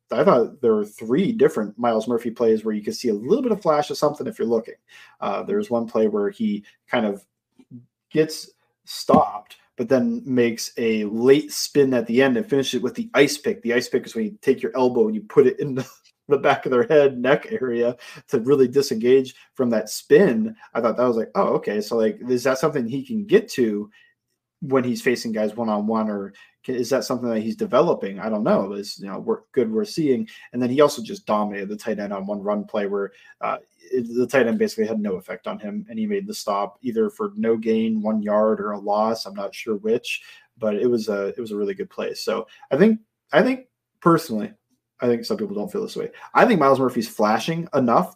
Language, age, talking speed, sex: English, 30-49, 235 wpm, male